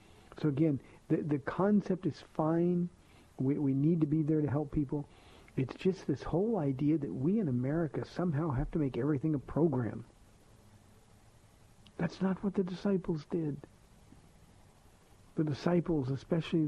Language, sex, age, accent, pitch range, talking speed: English, male, 50-69, American, 115-155 Hz, 150 wpm